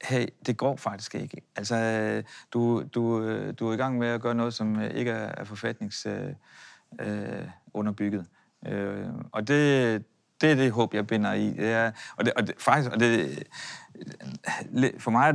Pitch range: 110-125 Hz